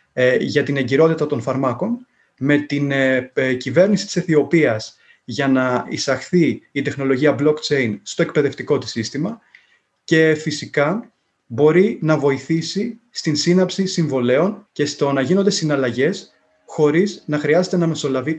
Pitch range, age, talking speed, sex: 140-185 Hz, 30-49, 125 wpm, male